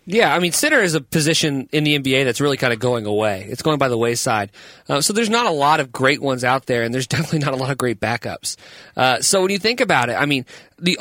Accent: American